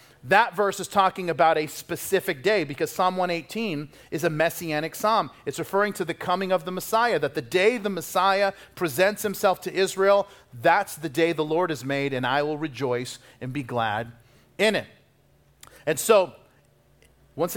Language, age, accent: English, 40-59, American